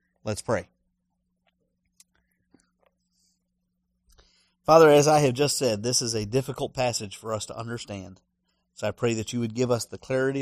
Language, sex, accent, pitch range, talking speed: English, male, American, 90-155 Hz, 155 wpm